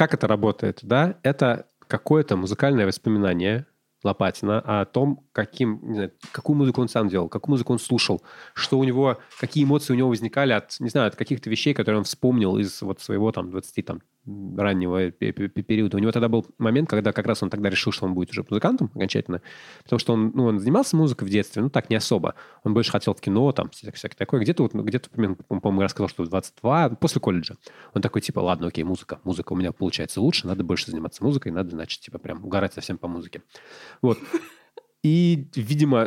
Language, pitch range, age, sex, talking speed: Russian, 100-140 Hz, 20-39, male, 205 wpm